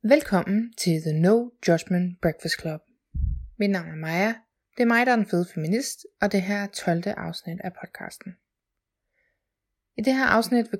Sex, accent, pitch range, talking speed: female, native, 175-225 Hz, 170 wpm